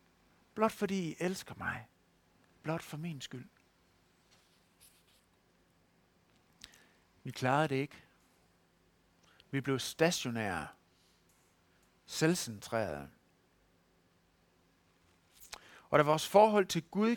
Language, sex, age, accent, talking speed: Danish, male, 60-79, native, 80 wpm